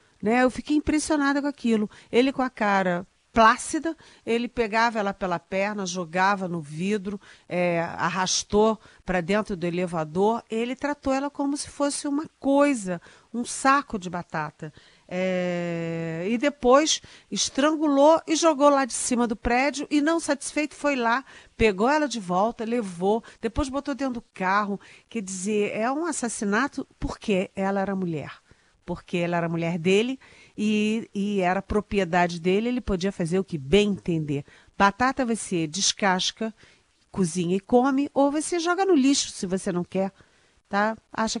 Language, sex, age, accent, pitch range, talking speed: Portuguese, female, 50-69, Brazilian, 185-265 Hz, 150 wpm